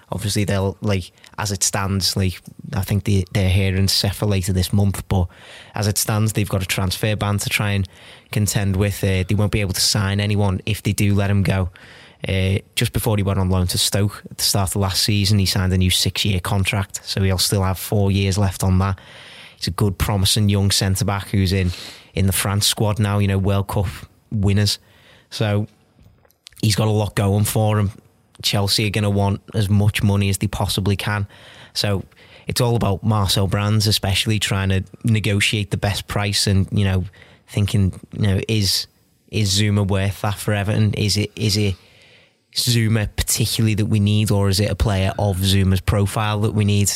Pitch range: 100-110 Hz